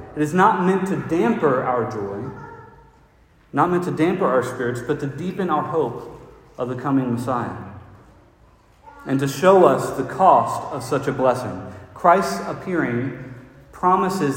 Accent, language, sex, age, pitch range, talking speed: American, English, male, 40-59, 125-170 Hz, 150 wpm